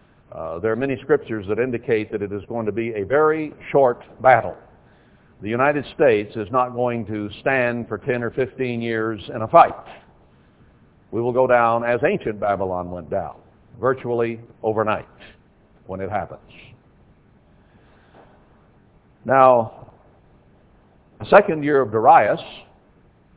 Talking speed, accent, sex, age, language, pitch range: 135 wpm, American, male, 60-79, English, 110-130 Hz